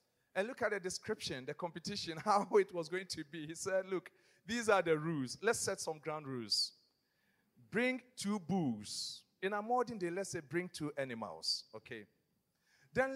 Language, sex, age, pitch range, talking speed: English, male, 40-59, 185-275 Hz, 180 wpm